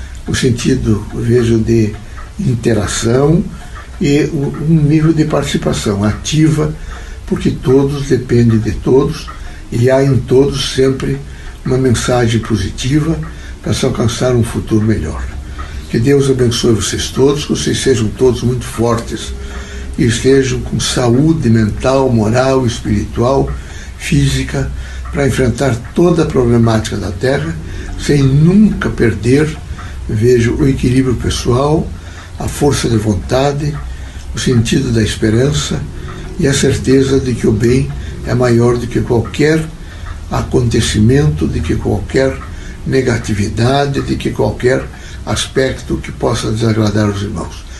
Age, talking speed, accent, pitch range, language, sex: 60-79, 125 wpm, Brazilian, 90-130 Hz, Portuguese, male